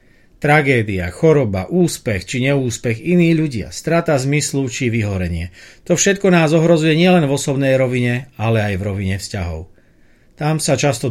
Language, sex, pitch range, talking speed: Slovak, male, 120-155 Hz, 145 wpm